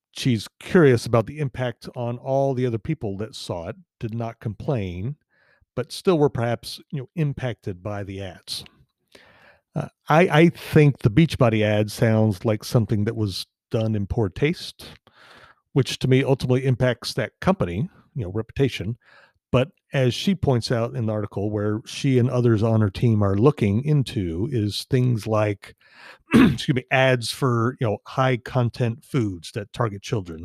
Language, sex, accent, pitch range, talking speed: English, male, American, 105-130 Hz, 165 wpm